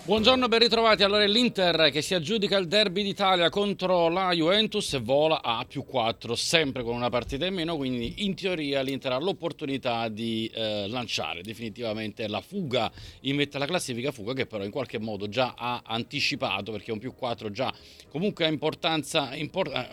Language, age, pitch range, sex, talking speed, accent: Italian, 40-59, 110-140 Hz, male, 175 wpm, native